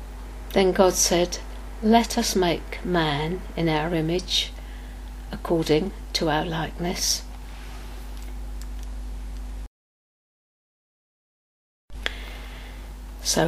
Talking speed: 65 wpm